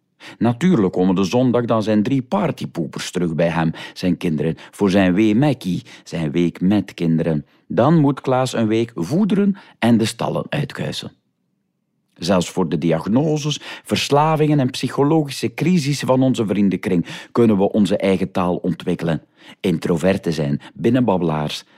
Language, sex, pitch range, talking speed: Dutch, male, 85-125 Hz, 140 wpm